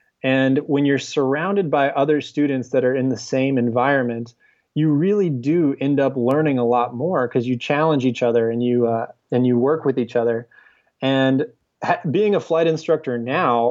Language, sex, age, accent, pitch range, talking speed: English, male, 20-39, American, 120-150 Hz, 190 wpm